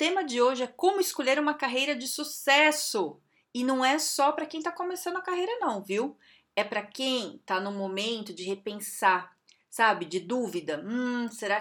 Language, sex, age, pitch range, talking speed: Portuguese, female, 30-49, 185-255 Hz, 180 wpm